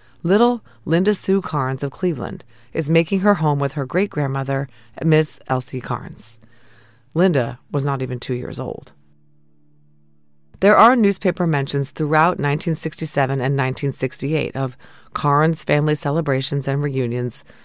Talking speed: 125 wpm